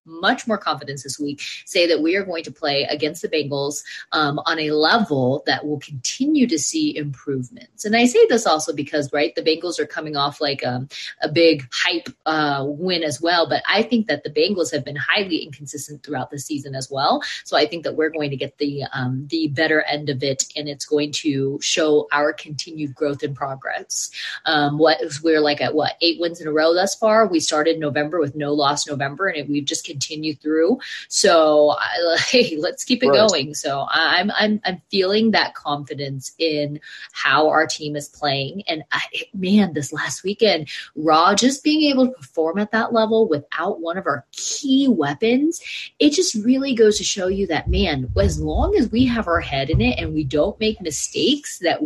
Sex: female